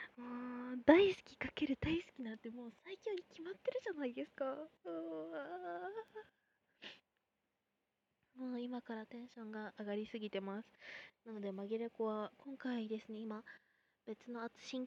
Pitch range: 220-295 Hz